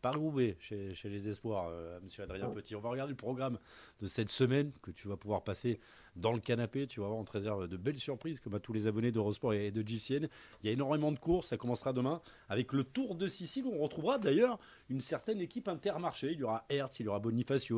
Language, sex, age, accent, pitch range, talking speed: French, male, 30-49, French, 115-160 Hz, 255 wpm